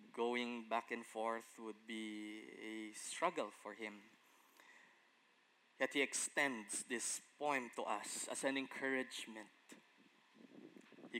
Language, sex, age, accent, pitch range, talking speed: English, male, 20-39, Filipino, 115-150 Hz, 115 wpm